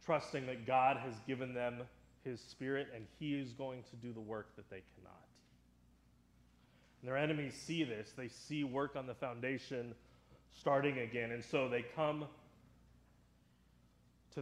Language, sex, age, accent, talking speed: English, male, 30-49, American, 155 wpm